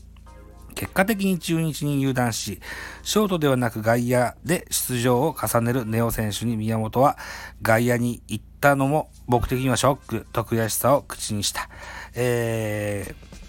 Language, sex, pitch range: Japanese, male, 95-135 Hz